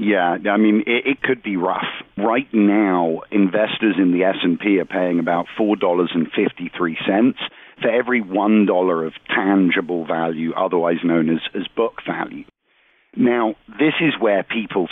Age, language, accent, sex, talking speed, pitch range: 50-69, English, British, male, 140 wpm, 95-125 Hz